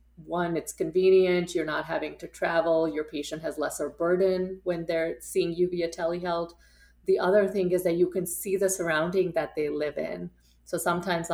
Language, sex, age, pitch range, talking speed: English, female, 30-49, 155-175 Hz, 185 wpm